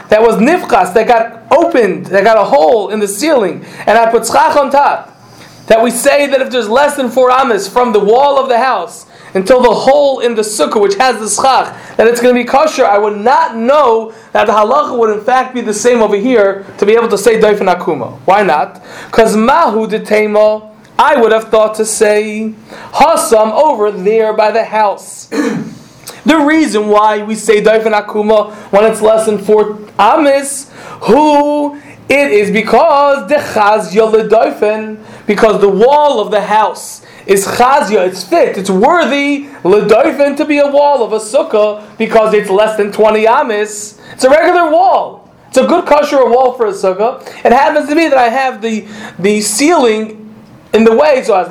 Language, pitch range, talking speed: Polish, 215-275 Hz, 190 wpm